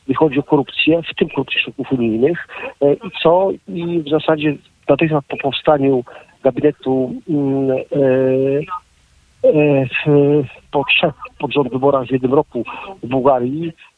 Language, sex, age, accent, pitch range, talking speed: Polish, male, 50-69, native, 135-160 Hz, 130 wpm